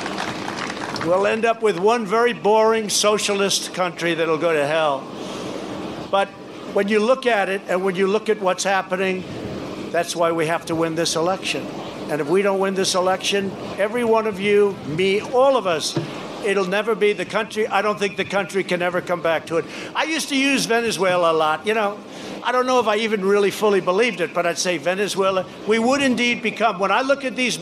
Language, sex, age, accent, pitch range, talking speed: Spanish, male, 60-79, American, 180-230 Hz, 210 wpm